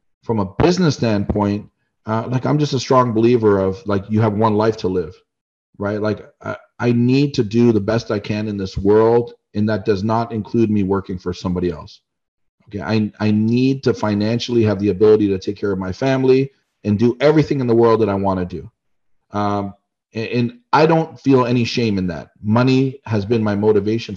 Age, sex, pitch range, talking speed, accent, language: 40-59, male, 100-115 Hz, 205 wpm, American, English